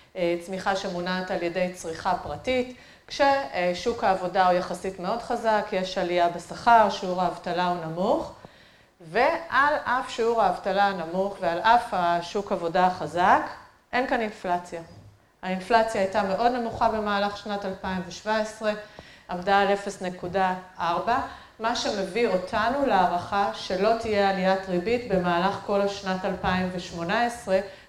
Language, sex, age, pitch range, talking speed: Hebrew, female, 30-49, 180-225 Hz, 115 wpm